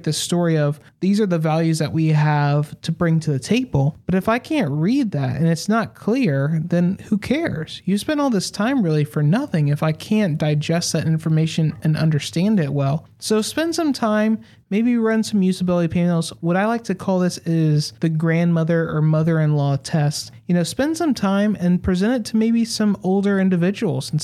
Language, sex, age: English, male, 30-49